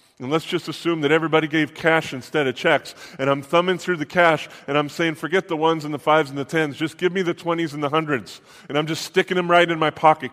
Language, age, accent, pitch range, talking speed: English, 30-49, American, 145-175 Hz, 265 wpm